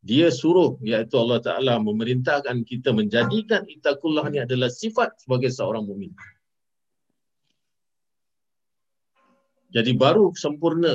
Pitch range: 115-155 Hz